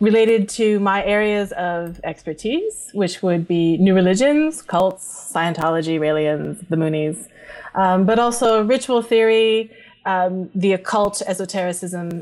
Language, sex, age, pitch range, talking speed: English, female, 30-49, 180-225 Hz, 125 wpm